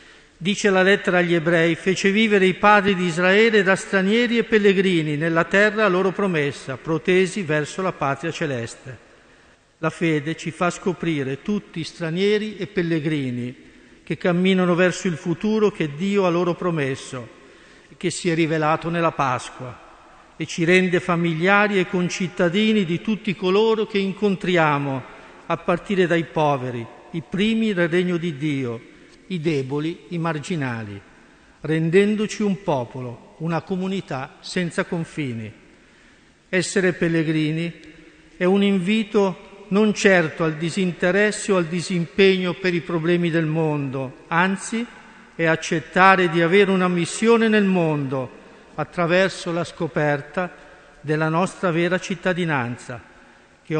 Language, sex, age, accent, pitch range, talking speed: Italian, male, 50-69, native, 155-190 Hz, 130 wpm